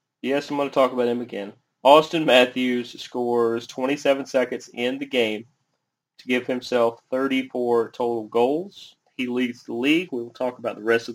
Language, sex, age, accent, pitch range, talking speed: English, male, 30-49, American, 115-130 Hz, 170 wpm